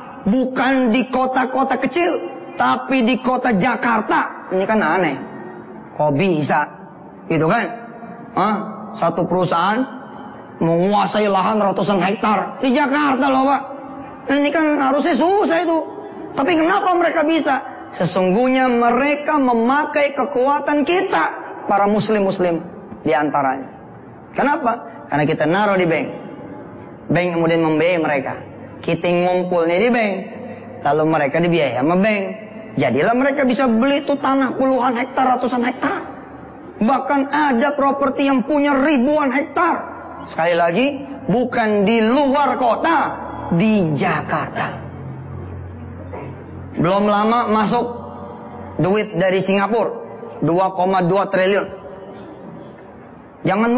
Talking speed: 105 wpm